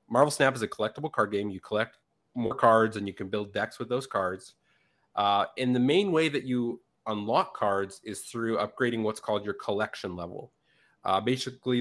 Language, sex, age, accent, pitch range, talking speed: English, male, 30-49, American, 105-130 Hz, 195 wpm